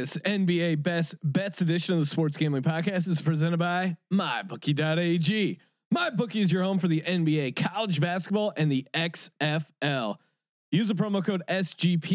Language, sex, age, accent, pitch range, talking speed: English, male, 30-49, American, 145-185 Hz, 160 wpm